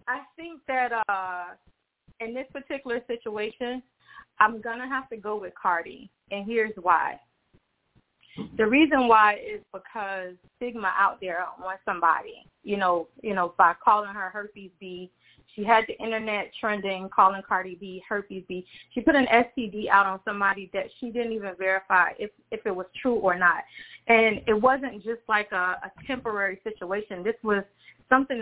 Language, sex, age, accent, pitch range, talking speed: English, female, 20-39, American, 195-240 Hz, 165 wpm